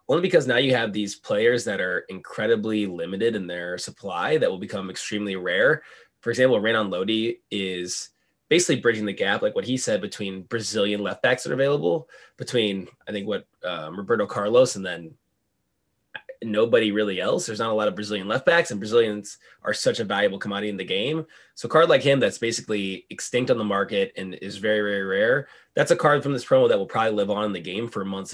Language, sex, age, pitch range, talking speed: English, male, 20-39, 100-120 Hz, 210 wpm